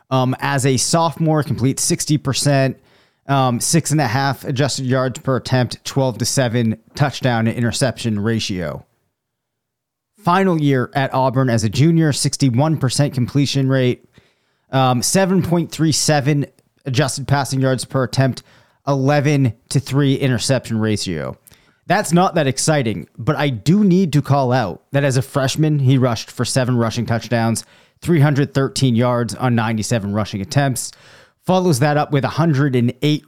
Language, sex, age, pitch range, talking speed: English, male, 30-49, 125-150 Hz, 140 wpm